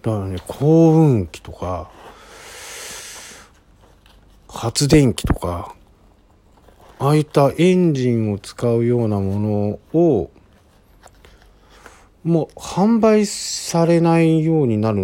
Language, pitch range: Japanese, 95-155 Hz